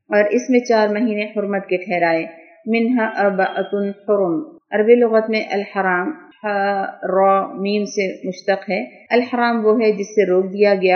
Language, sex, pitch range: Urdu, female, 185-220 Hz